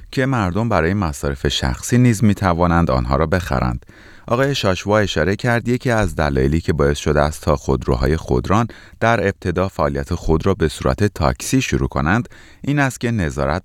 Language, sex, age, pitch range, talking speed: Persian, male, 30-49, 70-105 Hz, 170 wpm